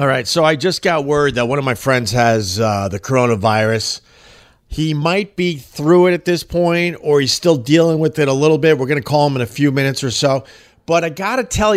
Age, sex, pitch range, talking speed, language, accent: 40-59, male, 130-160 Hz, 250 wpm, English, American